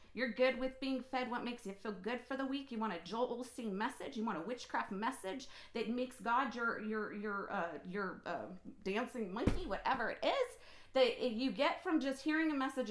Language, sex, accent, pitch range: English, female, American, 210-270 Hz